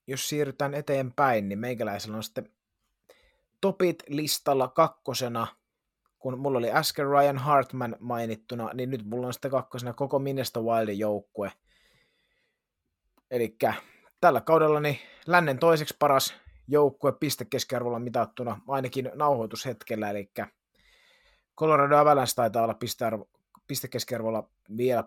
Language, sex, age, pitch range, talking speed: Finnish, male, 30-49, 120-145 Hz, 110 wpm